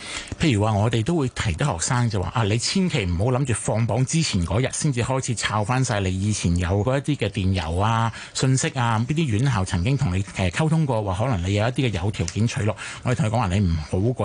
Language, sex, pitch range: Chinese, male, 100-135 Hz